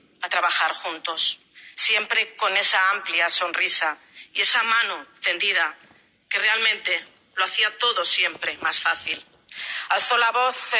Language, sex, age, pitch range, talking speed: Italian, female, 40-59, 190-240 Hz, 130 wpm